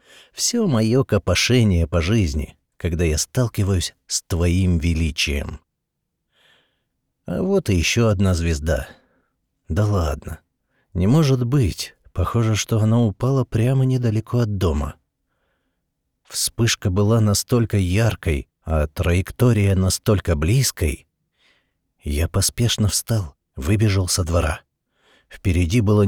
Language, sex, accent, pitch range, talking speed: Russian, male, native, 85-120 Hz, 105 wpm